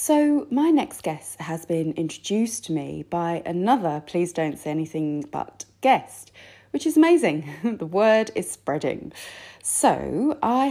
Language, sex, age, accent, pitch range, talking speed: English, female, 30-49, British, 155-220 Hz, 145 wpm